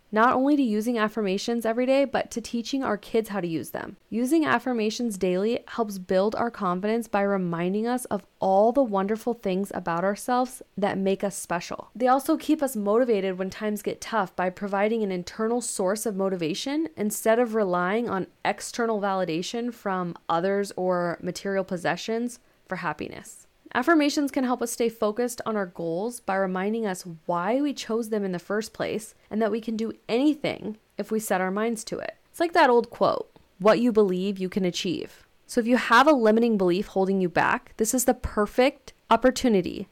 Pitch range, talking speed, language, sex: 195-240 Hz, 190 wpm, English, female